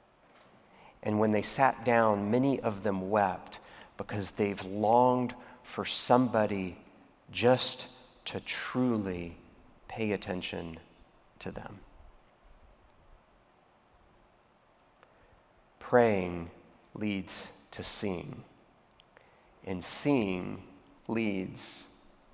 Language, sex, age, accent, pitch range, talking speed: English, male, 40-59, American, 100-120 Hz, 75 wpm